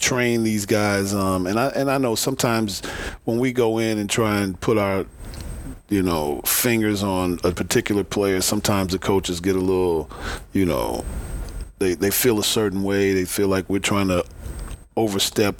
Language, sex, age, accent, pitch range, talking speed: English, male, 40-59, American, 90-105 Hz, 180 wpm